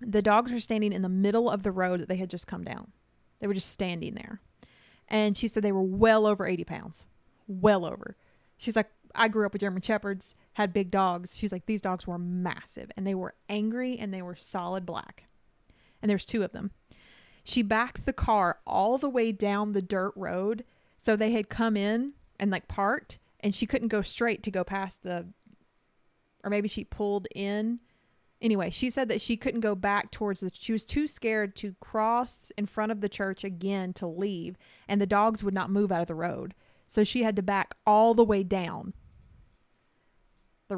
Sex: female